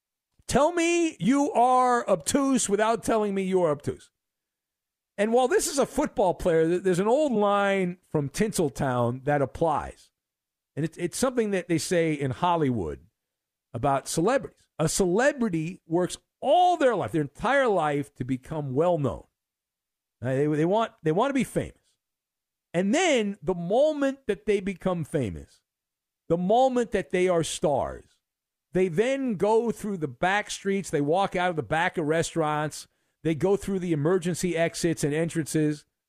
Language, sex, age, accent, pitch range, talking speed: English, male, 50-69, American, 160-220 Hz, 155 wpm